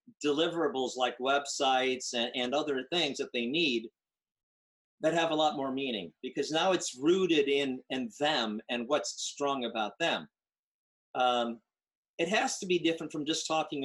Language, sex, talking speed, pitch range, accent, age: English, male, 160 wpm, 130-165 Hz, American, 50-69